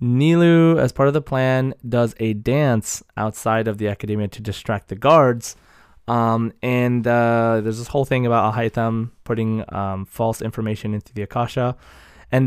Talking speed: 165 wpm